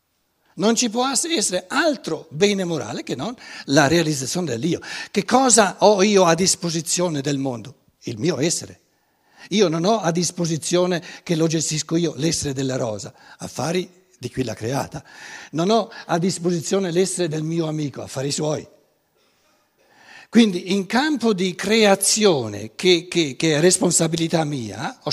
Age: 60-79